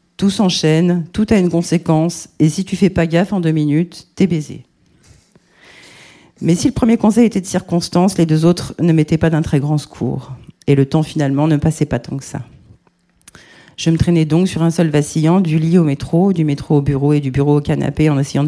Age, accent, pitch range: 40-59, French, 140-170 Hz